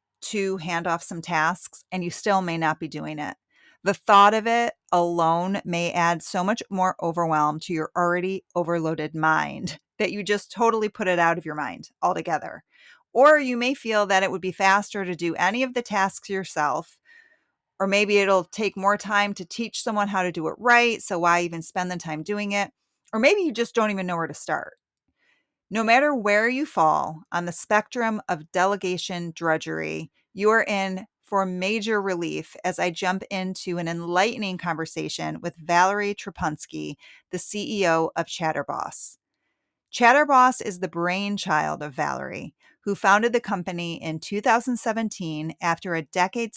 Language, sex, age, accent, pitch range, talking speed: English, female, 30-49, American, 170-210 Hz, 170 wpm